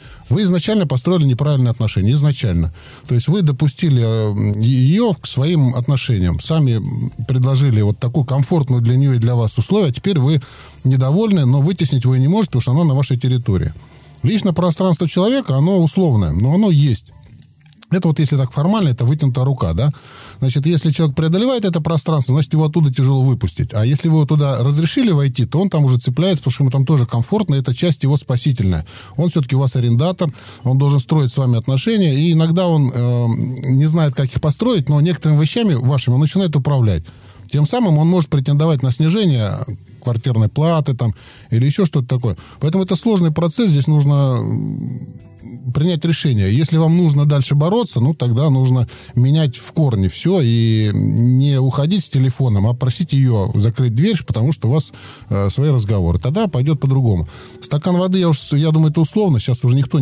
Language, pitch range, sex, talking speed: Russian, 120-160 Hz, male, 185 wpm